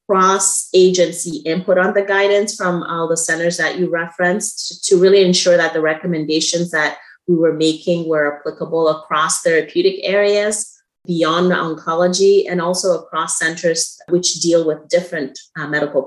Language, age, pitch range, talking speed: English, 30-49, 150-185 Hz, 155 wpm